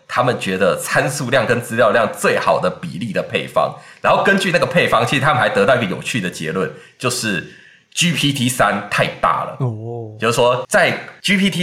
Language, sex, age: Chinese, male, 30-49